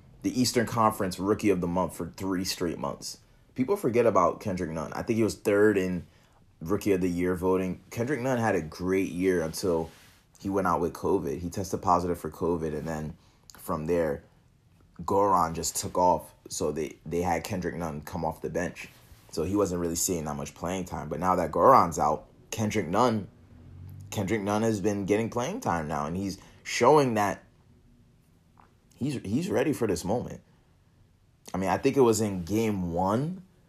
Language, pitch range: English, 85-110 Hz